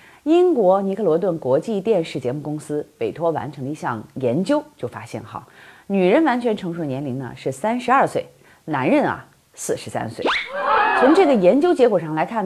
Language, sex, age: Chinese, female, 30-49